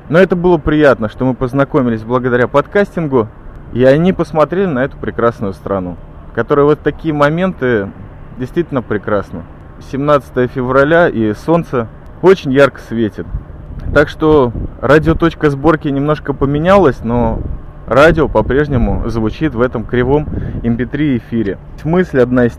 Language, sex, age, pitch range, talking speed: Russian, male, 20-39, 115-150 Hz, 125 wpm